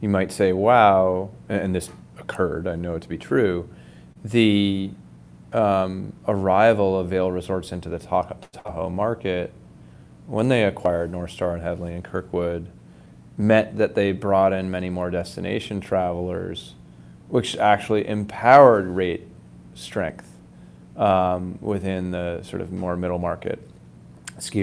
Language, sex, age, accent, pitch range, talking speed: English, male, 30-49, American, 85-100 Hz, 135 wpm